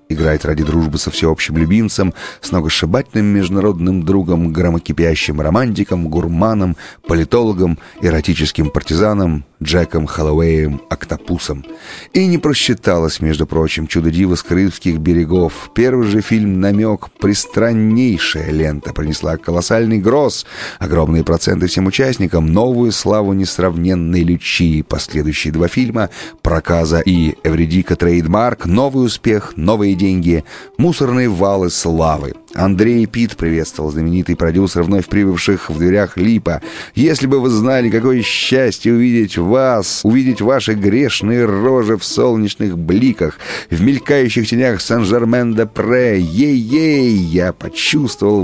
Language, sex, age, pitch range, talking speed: Russian, male, 30-49, 85-115 Hz, 110 wpm